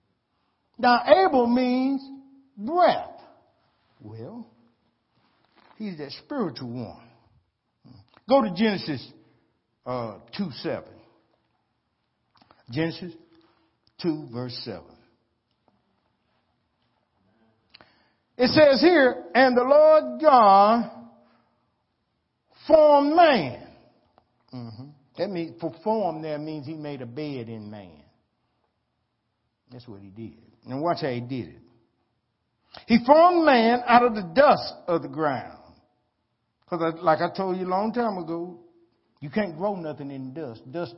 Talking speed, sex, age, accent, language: 115 wpm, male, 60-79, American, English